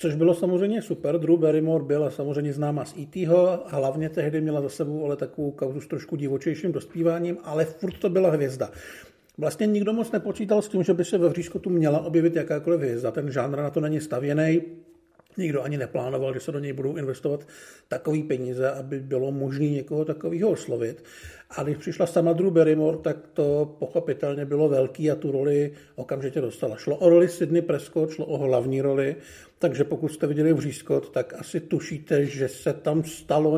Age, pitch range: 50-69, 140-170 Hz